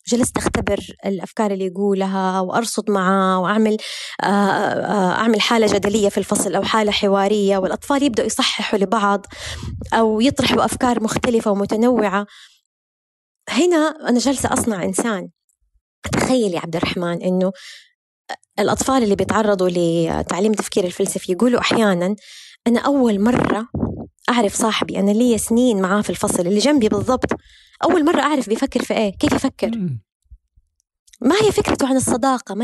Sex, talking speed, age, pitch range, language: female, 130 wpm, 20-39, 200-250 Hz, Arabic